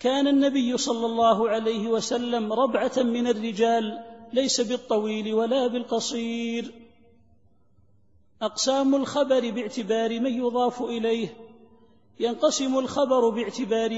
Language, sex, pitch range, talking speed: Arabic, male, 225-245 Hz, 95 wpm